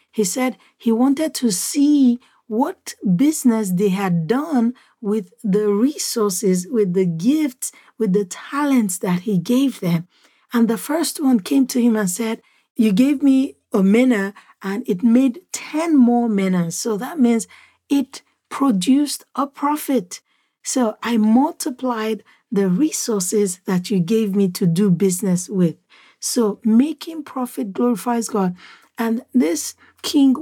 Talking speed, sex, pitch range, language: 140 wpm, female, 205-265 Hz, English